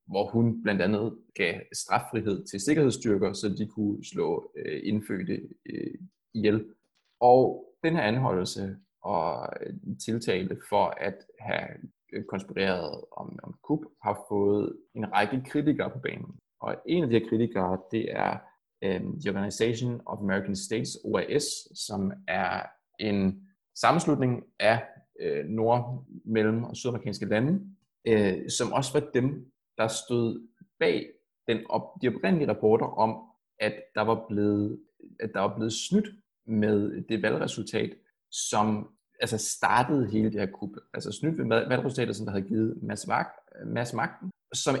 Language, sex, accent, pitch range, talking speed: Danish, male, native, 105-130 Hz, 135 wpm